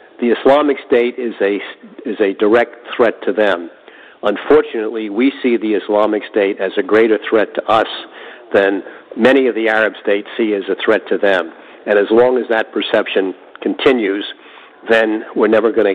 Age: 60-79